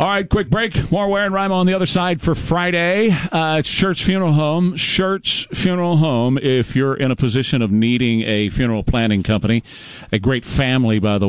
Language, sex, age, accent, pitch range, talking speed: English, male, 40-59, American, 105-125 Hz, 195 wpm